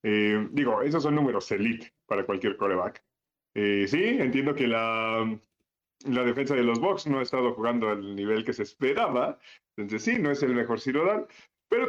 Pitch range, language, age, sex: 120-170 Hz, Spanish, 30-49, male